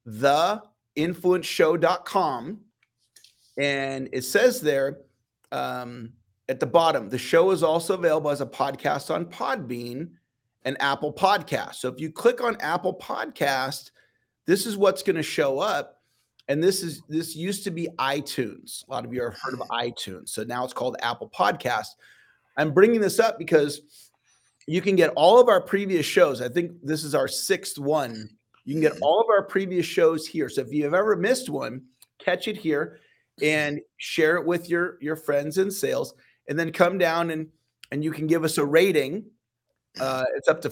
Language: English